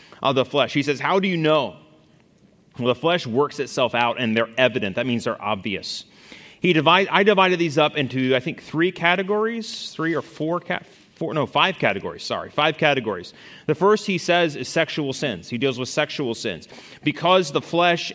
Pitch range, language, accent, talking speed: 125-165 Hz, English, American, 190 wpm